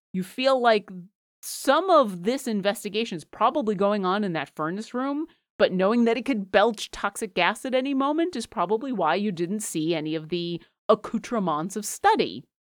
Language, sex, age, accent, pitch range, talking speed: English, female, 30-49, American, 170-225 Hz, 180 wpm